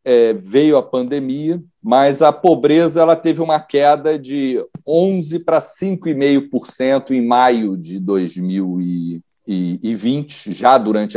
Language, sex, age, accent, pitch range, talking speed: Portuguese, male, 40-59, Brazilian, 110-150 Hz, 100 wpm